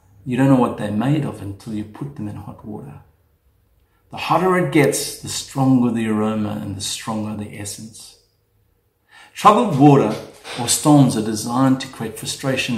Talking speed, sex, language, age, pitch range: 170 wpm, male, English, 50-69, 105-145 Hz